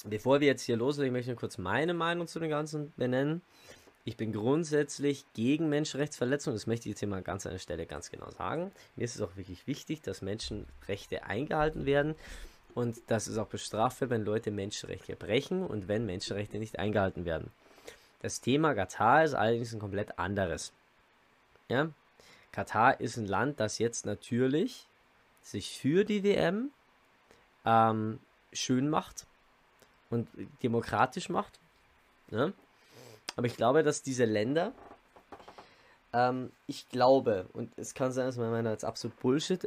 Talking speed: 155 wpm